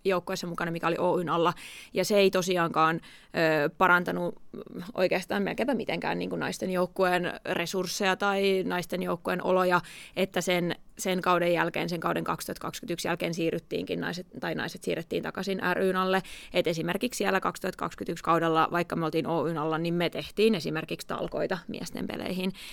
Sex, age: female, 20-39